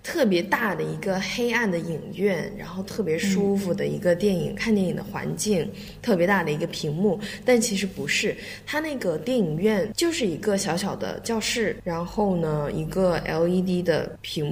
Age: 20-39